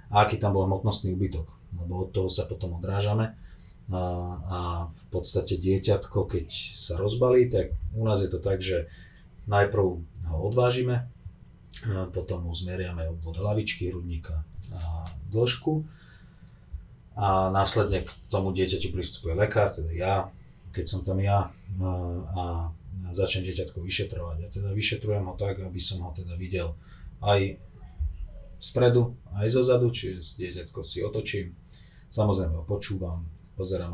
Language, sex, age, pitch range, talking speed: Slovak, male, 30-49, 85-105 Hz, 135 wpm